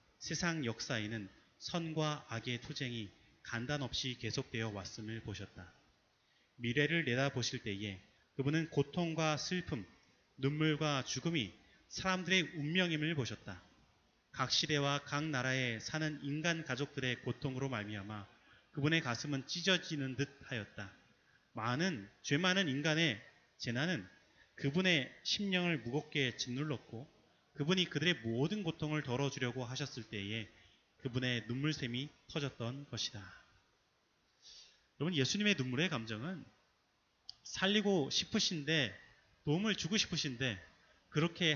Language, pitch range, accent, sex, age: Korean, 115-160 Hz, native, male, 30-49